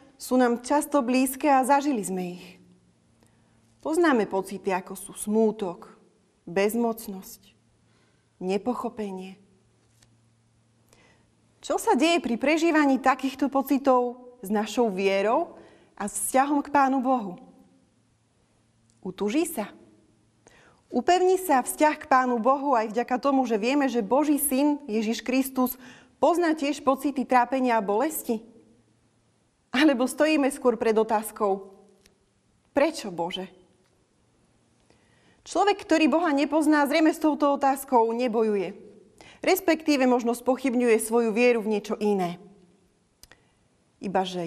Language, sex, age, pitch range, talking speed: Slovak, female, 30-49, 190-275 Hz, 110 wpm